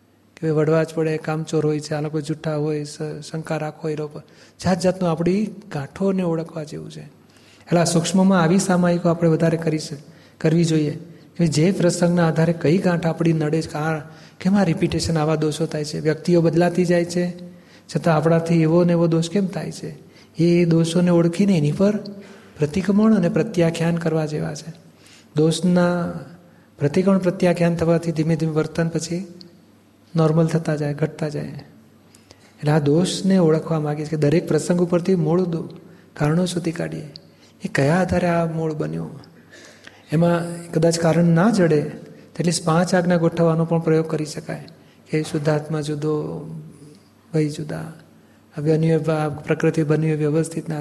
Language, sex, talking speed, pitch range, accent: Gujarati, male, 150 wpm, 155-175 Hz, native